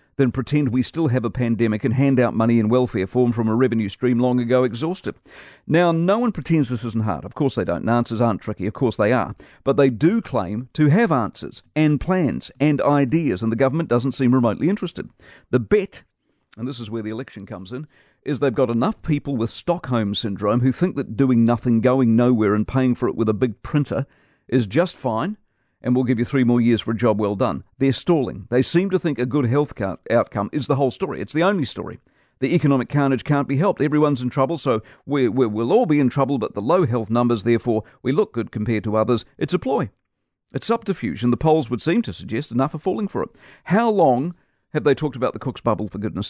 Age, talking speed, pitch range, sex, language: 50-69, 230 wpm, 115-145 Hz, male, English